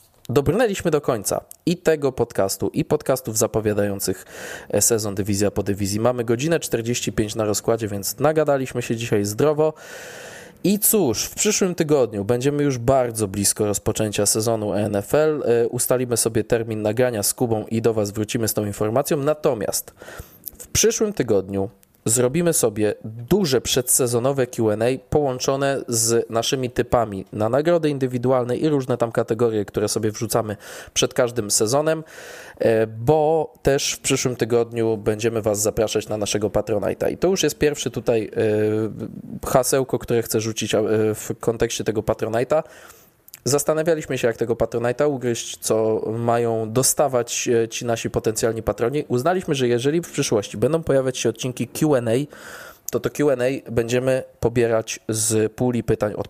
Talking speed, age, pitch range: 140 wpm, 20-39, 110-140 Hz